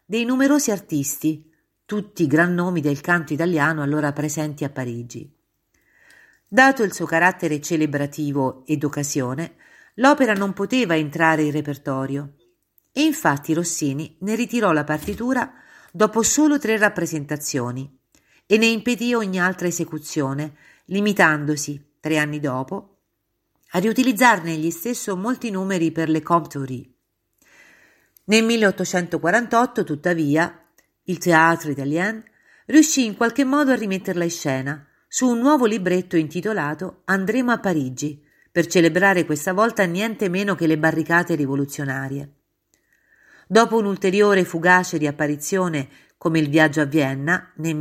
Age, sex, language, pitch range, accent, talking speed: 50-69, female, Italian, 150-210 Hz, native, 125 wpm